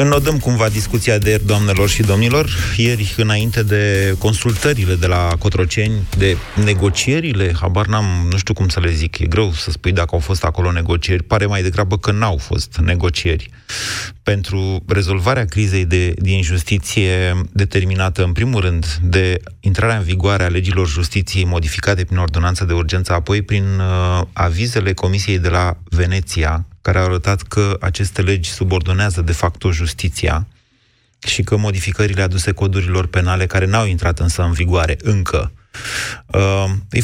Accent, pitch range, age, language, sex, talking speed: native, 90-105 Hz, 30-49, Romanian, male, 150 wpm